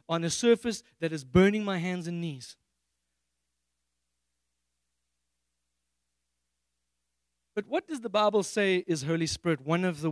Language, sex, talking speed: English, male, 130 wpm